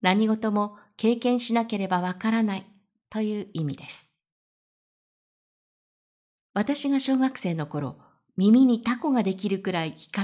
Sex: female